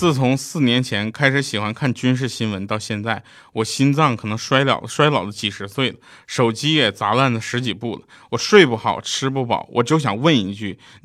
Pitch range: 105-130 Hz